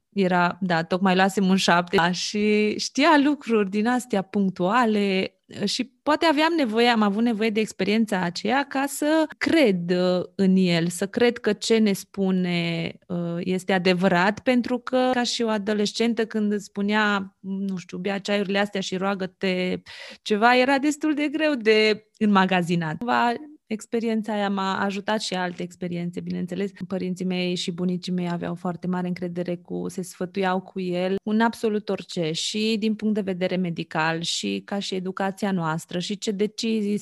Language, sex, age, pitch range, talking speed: Romanian, female, 20-39, 180-215 Hz, 160 wpm